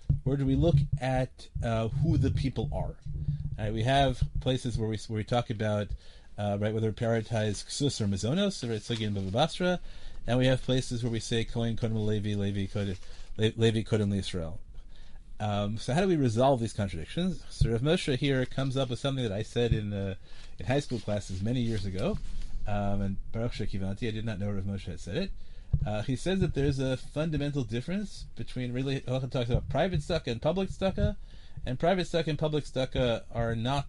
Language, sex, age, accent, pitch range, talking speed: English, male, 40-59, American, 110-140 Hz, 180 wpm